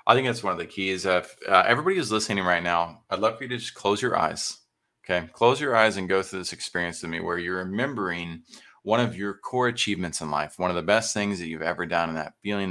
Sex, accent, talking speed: male, American, 270 wpm